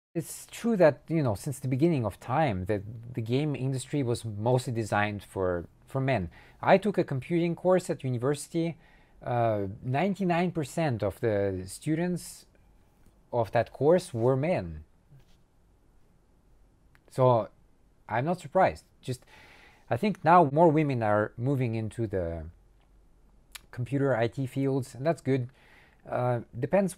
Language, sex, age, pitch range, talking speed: English, male, 40-59, 110-150 Hz, 130 wpm